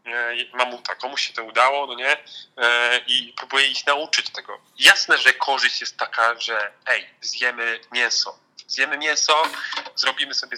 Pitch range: 125-165 Hz